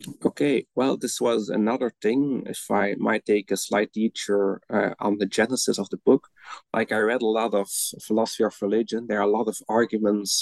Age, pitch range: 30-49, 110-135 Hz